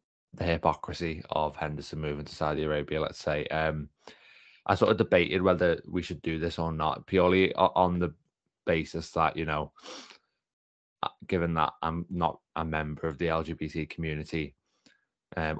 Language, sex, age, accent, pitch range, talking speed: English, male, 20-39, British, 75-85 Hz, 155 wpm